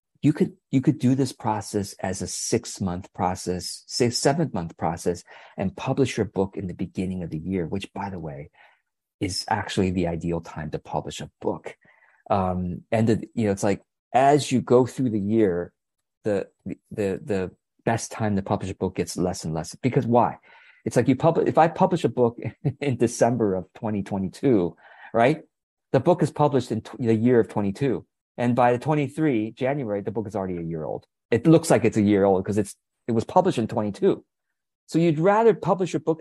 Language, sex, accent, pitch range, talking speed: English, male, American, 95-135 Hz, 205 wpm